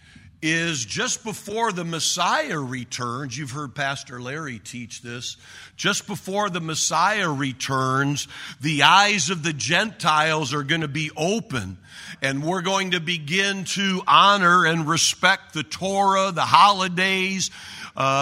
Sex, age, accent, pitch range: male, 50-69, American, 135-185 Hz